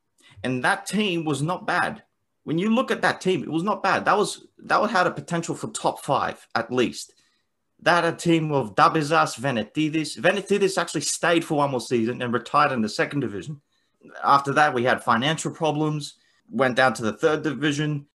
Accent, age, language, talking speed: Australian, 30-49, English, 195 wpm